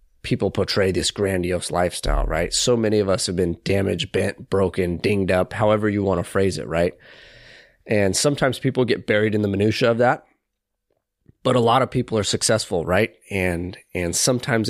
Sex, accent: male, American